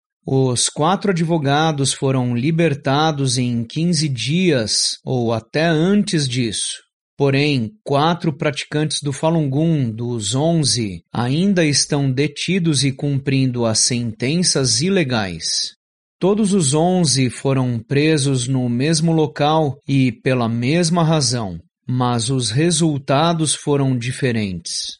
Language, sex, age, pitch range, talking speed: Portuguese, male, 30-49, 130-160 Hz, 105 wpm